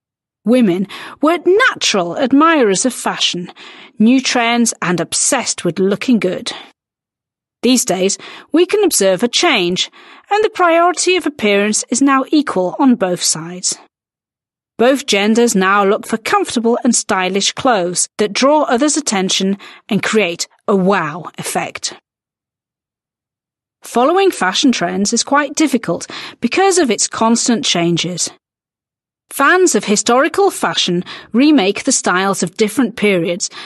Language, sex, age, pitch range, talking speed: Slovak, female, 40-59, 185-265 Hz, 125 wpm